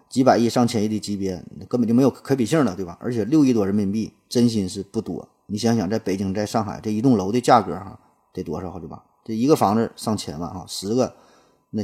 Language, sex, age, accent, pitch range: Chinese, male, 20-39, native, 100-120 Hz